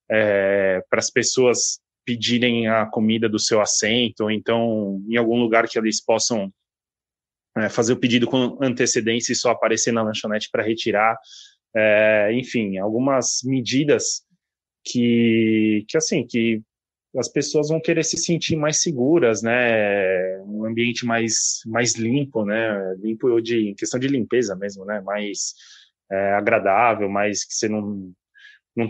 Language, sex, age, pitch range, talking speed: Portuguese, male, 20-39, 105-125 Hz, 145 wpm